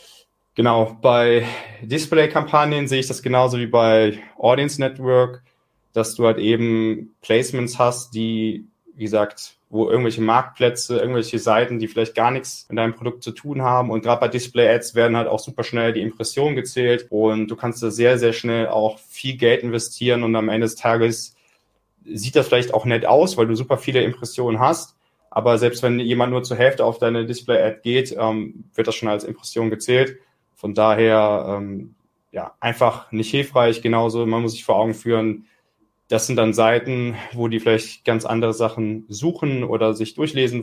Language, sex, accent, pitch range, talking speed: German, male, German, 110-125 Hz, 175 wpm